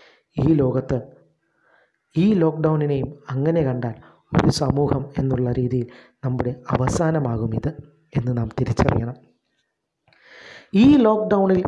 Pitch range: 130-160 Hz